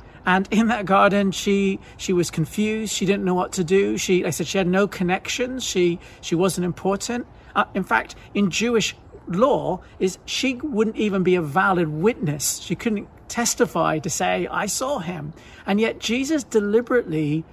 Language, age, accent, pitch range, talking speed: English, 40-59, British, 175-230 Hz, 180 wpm